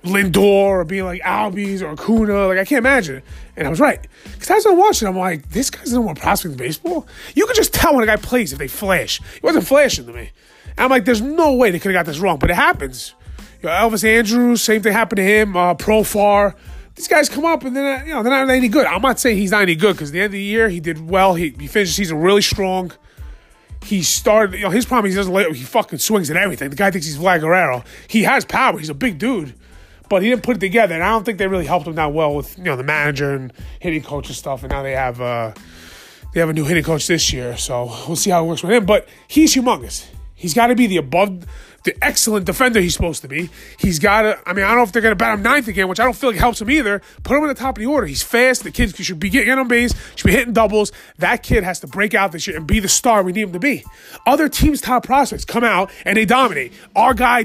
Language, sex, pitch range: English, male, 180-245 Hz